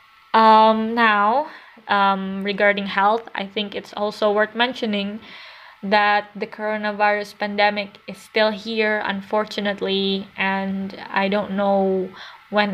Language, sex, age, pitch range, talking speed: English, female, 20-39, 205-235 Hz, 115 wpm